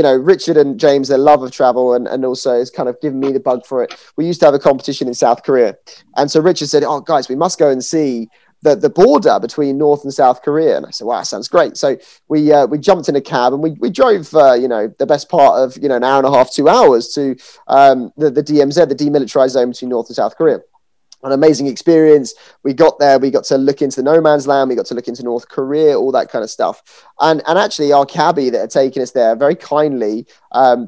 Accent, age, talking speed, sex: British, 20-39, 265 wpm, male